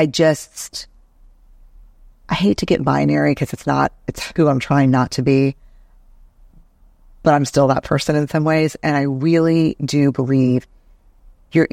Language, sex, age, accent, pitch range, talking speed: English, female, 40-59, American, 95-155 Hz, 160 wpm